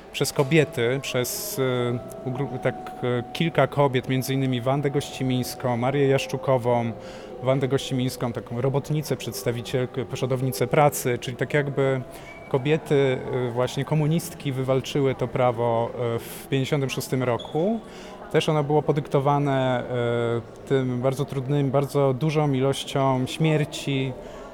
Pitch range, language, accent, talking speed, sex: 125-145 Hz, Polish, native, 115 wpm, male